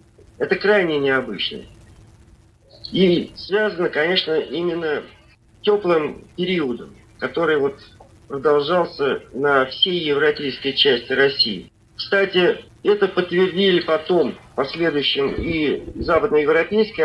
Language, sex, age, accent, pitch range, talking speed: Russian, male, 40-59, native, 140-215 Hz, 90 wpm